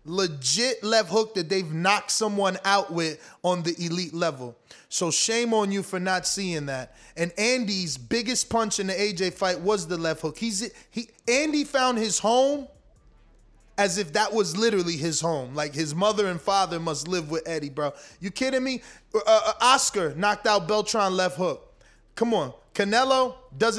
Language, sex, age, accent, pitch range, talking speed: English, male, 20-39, American, 185-240 Hz, 175 wpm